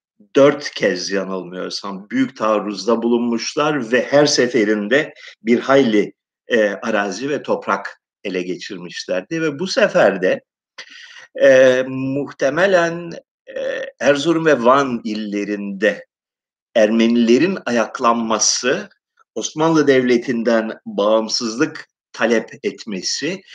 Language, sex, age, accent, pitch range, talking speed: Turkish, male, 50-69, native, 115-175 Hz, 85 wpm